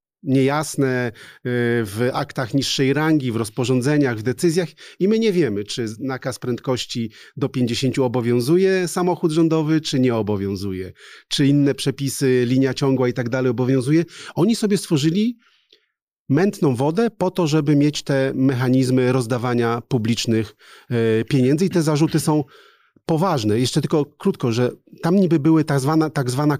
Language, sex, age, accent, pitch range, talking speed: Polish, male, 40-59, native, 125-155 Hz, 140 wpm